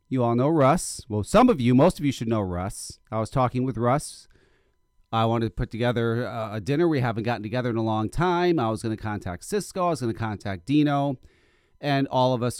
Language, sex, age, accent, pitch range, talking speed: English, male, 40-59, American, 105-160 Hz, 240 wpm